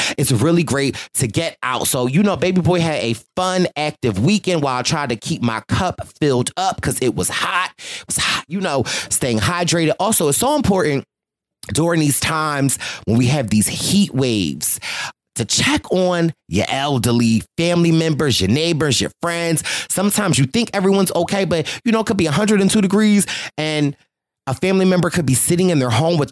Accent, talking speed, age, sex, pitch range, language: American, 190 wpm, 30-49, male, 120-180 Hz, English